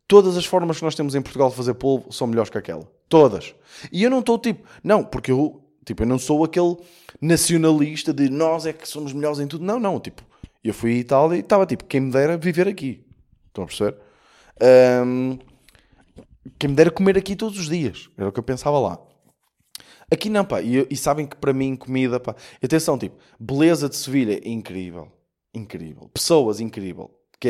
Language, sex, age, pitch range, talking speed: Portuguese, male, 20-39, 125-170 Hz, 205 wpm